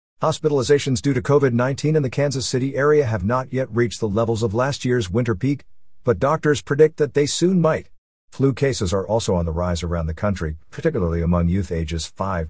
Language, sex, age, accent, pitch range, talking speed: English, male, 50-69, American, 90-125 Hz, 200 wpm